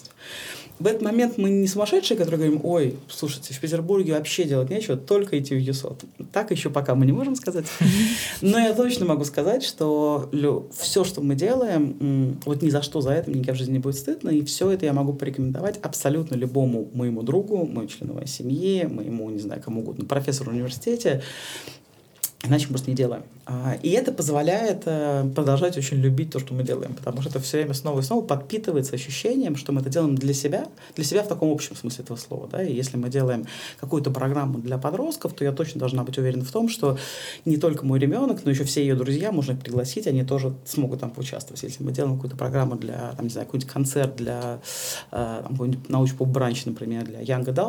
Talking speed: 200 wpm